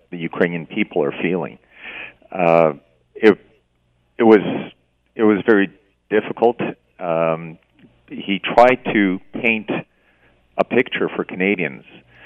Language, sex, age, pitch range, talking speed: English, male, 50-69, 75-95 Hz, 110 wpm